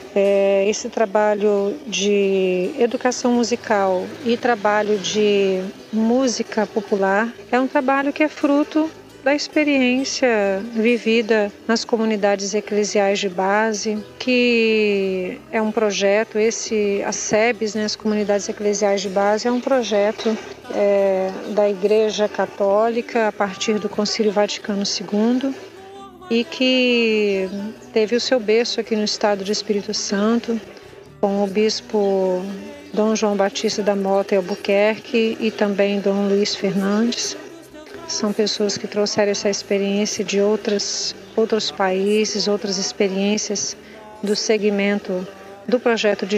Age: 40-59